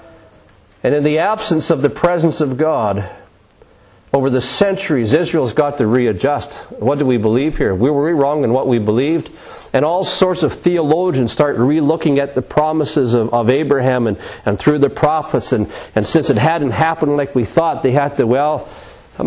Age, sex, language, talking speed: 40-59, male, English, 180 wpm